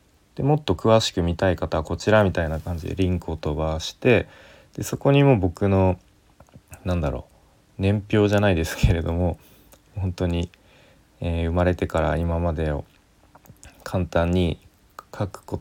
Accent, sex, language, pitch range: native, male, Japanese, 85-105 Hz